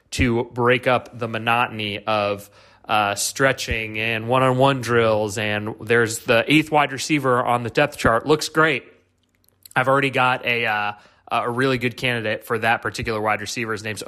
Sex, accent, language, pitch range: male, American, English, 115-135 Hz